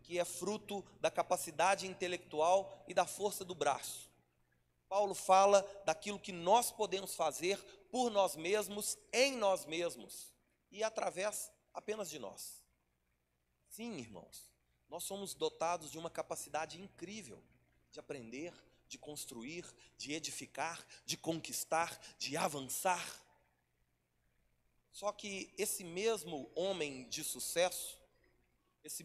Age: 30-49